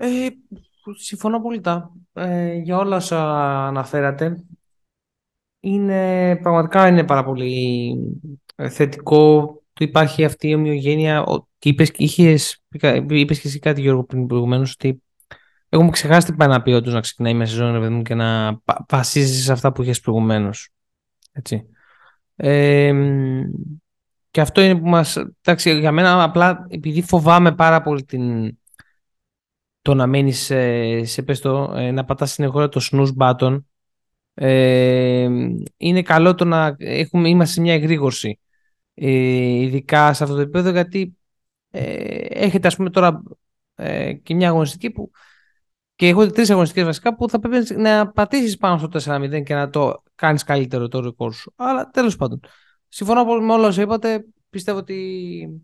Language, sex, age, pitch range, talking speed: Greek, male, 20-39, 135-180 Hz, 140 wpm